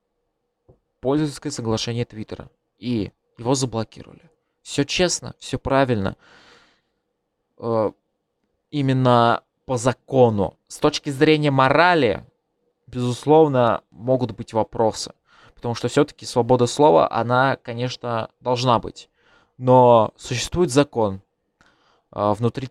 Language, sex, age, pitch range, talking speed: Russian, male, 20-39, 115-135 Hz, 90 wpm